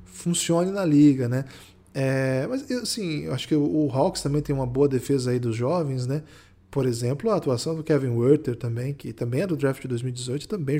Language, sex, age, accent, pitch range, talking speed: Portuguese, male, 20-39, Brazilian, 125-170 Hz, 200 wpm